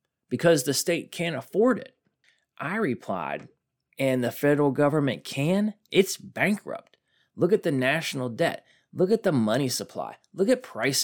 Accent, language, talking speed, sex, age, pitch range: American, English, 150 wpm, male, 30-49, 125-165 Hz